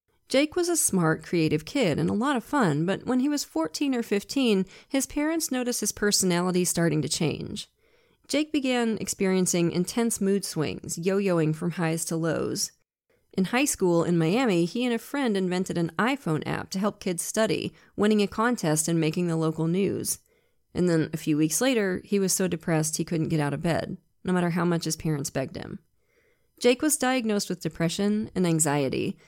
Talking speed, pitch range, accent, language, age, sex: 190 wpm, 170-235 Hz, American, English, 30-49, female